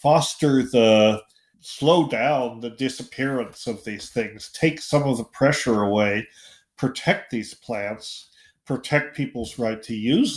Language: English